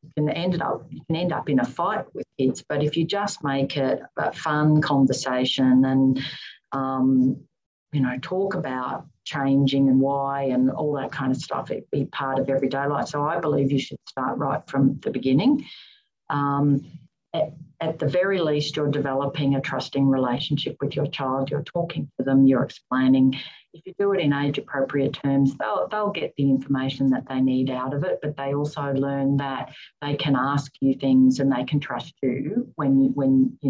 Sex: female